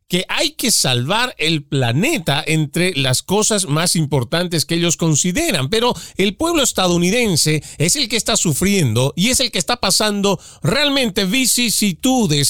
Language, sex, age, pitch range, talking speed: Spanish, male, 40-59, 145-210 Hz, 150 wpm